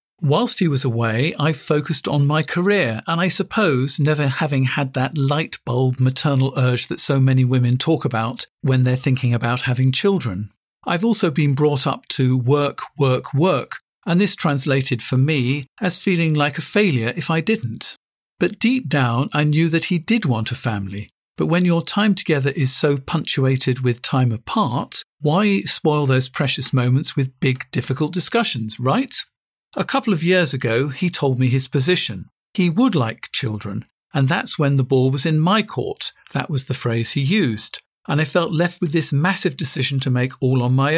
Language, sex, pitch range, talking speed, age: English, male, 130-170 Hz, 185 wpm, 50-69